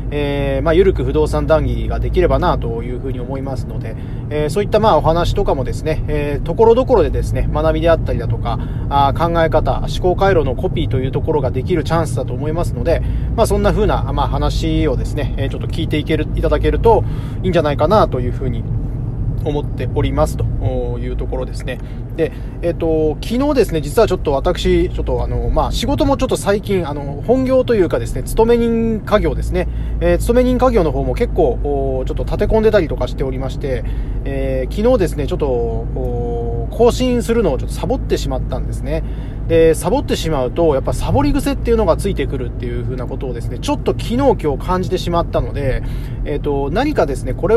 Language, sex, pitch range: Japanese, male, 125-170 Hz